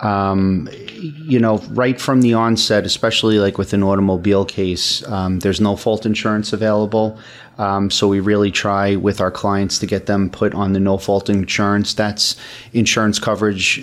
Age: 30-49